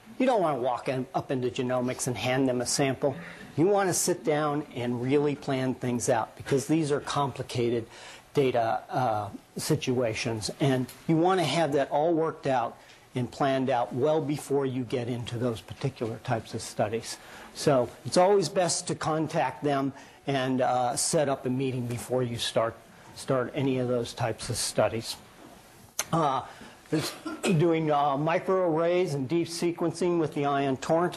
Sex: male